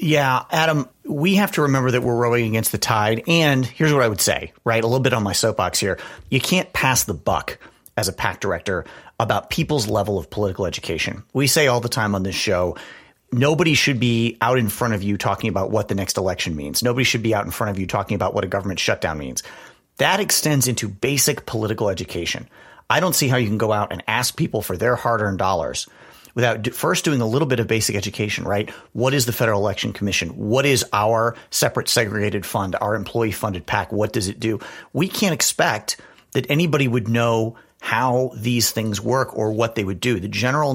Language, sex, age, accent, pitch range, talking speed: English, male, 40-59, American, 100-130 Hz, 220 wpm